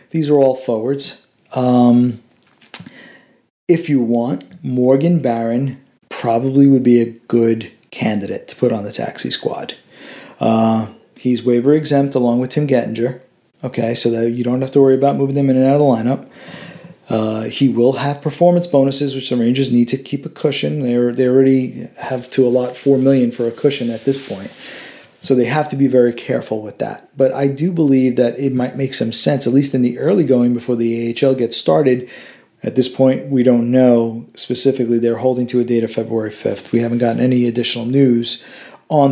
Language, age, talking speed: English, 40-59, 195 wpm